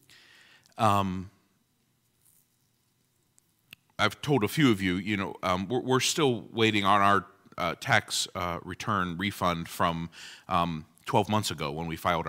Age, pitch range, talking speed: 40-59, 90-120 Hz, 140 wpm